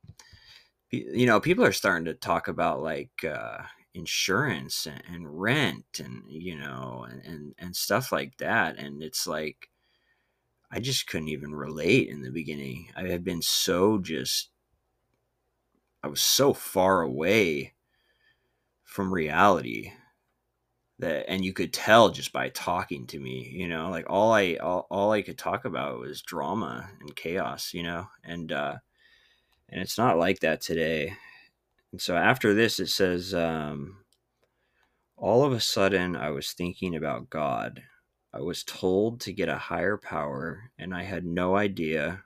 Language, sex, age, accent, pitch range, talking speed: English, male, 30-49, American, 75-95 Hz, 155 wpm